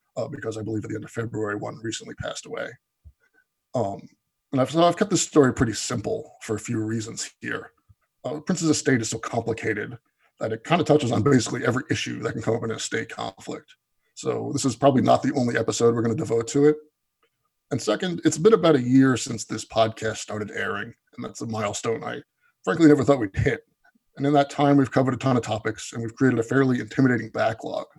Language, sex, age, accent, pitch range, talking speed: English, male, 20-39, American, 115-145 Hz, 220 wpm